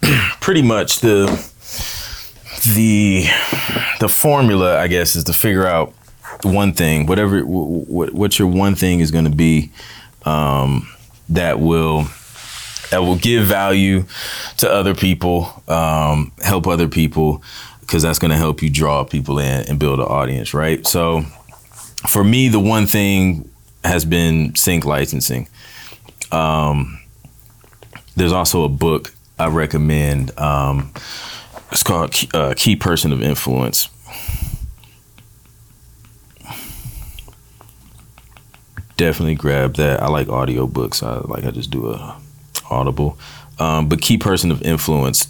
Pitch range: 75-105 Hz